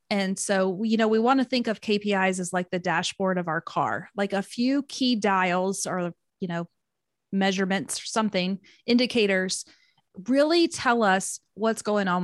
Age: 30-49